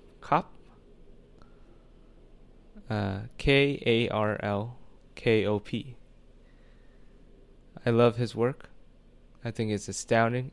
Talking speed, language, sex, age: 55 wpm, English, male, 20-39